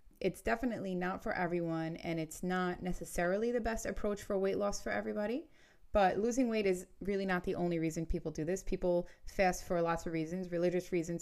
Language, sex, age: English, female, 20-39